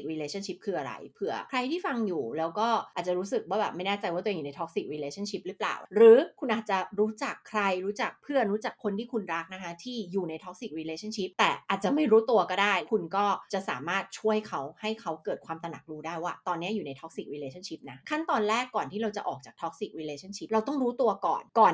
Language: Thai